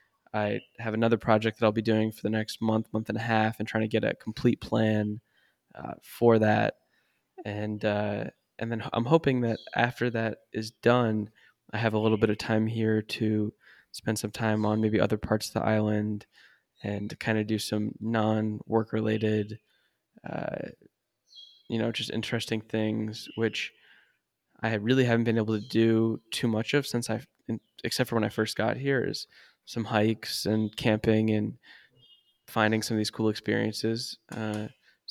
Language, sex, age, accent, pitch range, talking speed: English, male, 10-29, American, 105-115 Hz, 180 wpm